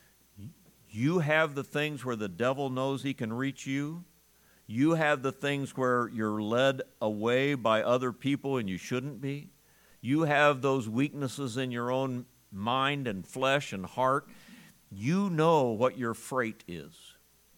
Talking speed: 155 wpm